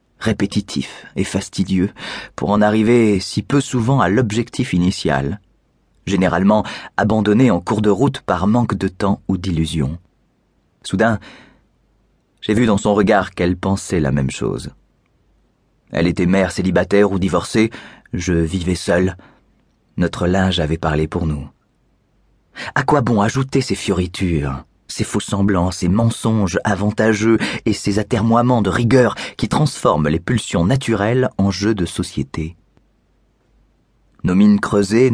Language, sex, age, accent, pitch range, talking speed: French, male, 30-49, French, 90-110 Hz, 135 wpm